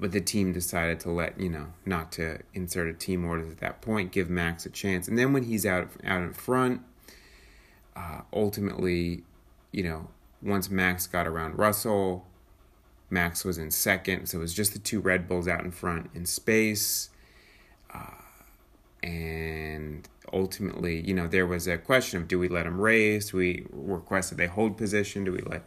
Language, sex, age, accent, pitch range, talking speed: English, male, 30-49, American, 90-105 Hz, 185 wpm